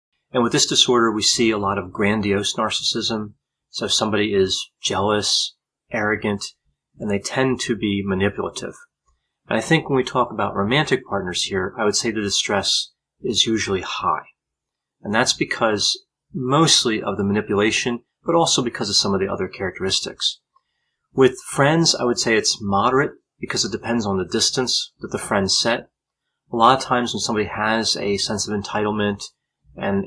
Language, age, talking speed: English, 30-49, 175 wpm